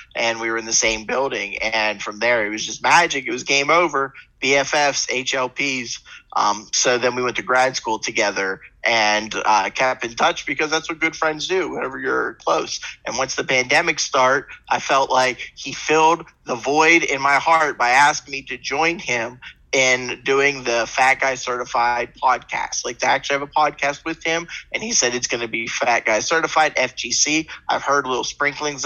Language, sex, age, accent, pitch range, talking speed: English, male, 30-49, American, 125-155 Hz, 195 wpm